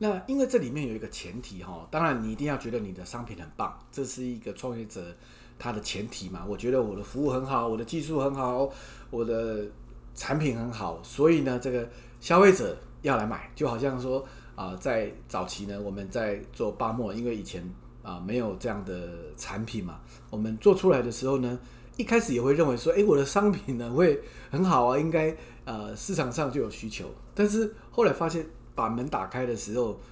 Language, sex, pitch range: English, male, 100-155 Hz